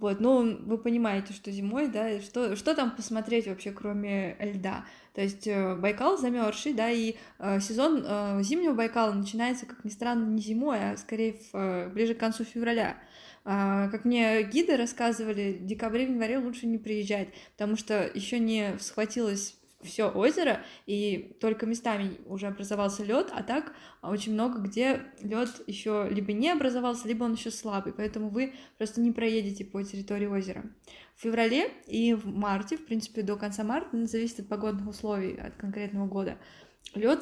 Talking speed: 170 wpm